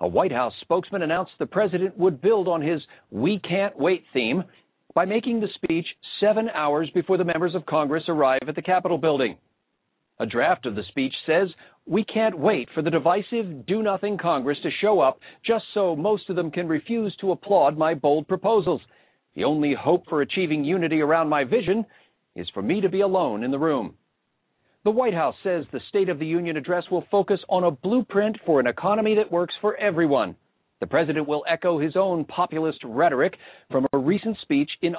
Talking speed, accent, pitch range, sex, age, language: 195 wpm, American, 155-205 Hz, male, 50-69, English